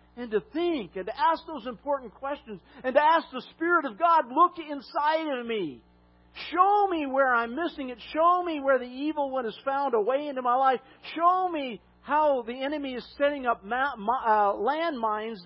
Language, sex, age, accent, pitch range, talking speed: English, male, 50-69, American, 210-310 Hz, 185 wpm